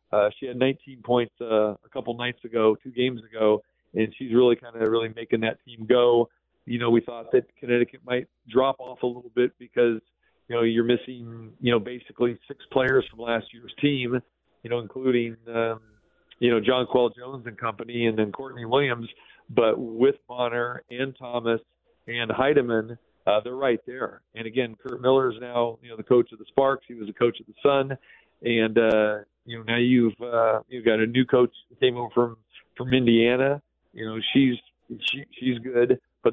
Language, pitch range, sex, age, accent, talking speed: English, 115-130 Hz, male, 40-59, American, 200 wpm